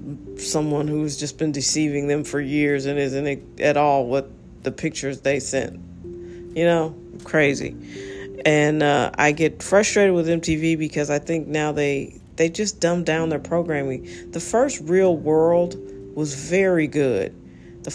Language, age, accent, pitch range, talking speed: English, 40-59, American, 140-170 Hz, 155 wpm